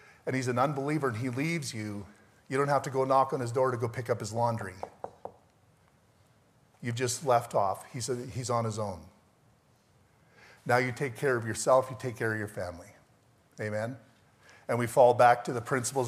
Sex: male